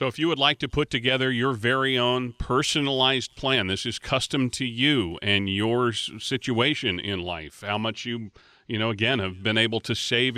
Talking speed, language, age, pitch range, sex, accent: 195 wpm, English, 40-59, 115-135 Hz, male, American